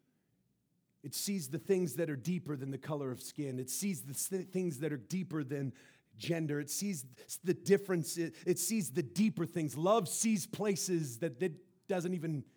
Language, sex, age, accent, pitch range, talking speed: English, male, 40-59, American, 115-165 Hz, 185 wpm